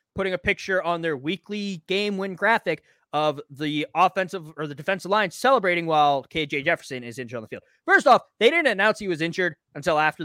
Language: English